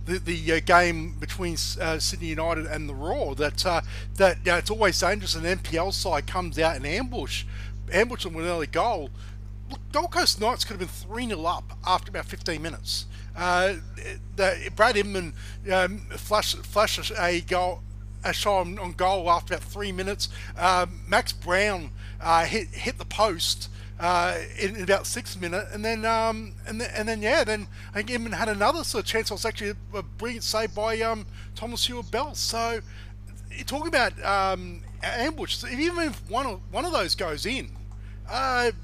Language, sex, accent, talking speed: English, male, Australian, 185 wpm